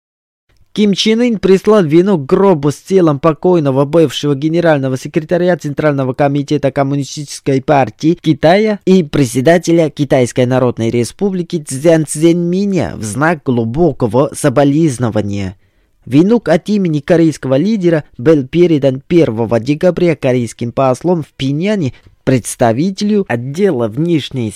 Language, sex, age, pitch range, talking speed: Russian, male, 20-39, 125-165 Hz, 110 wpm